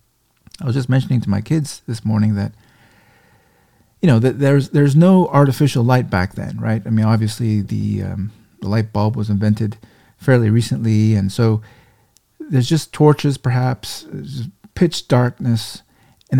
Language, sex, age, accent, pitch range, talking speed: English, male, 40-59, American, 110-140 Hz, 155 wpm